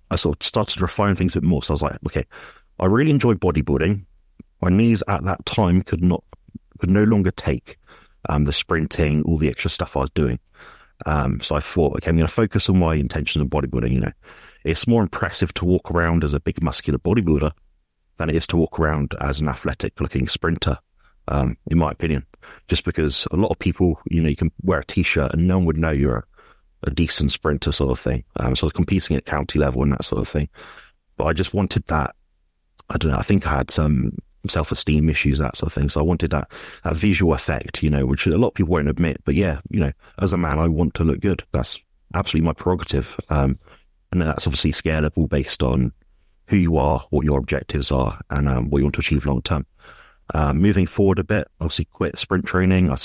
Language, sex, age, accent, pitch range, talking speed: English, male, 30-49, British, 70-90 Hz, 235 wpm